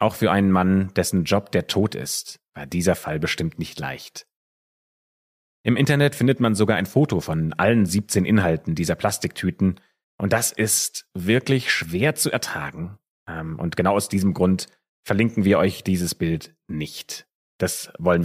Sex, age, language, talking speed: male, 30-49, German, 160 wpm